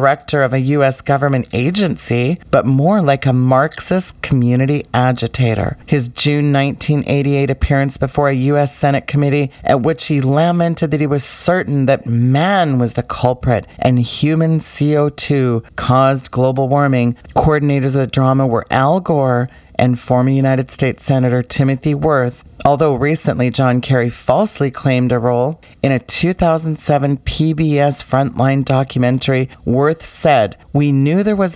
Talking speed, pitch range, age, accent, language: 145 wpm, 125-145 Hz, 40-59, American, English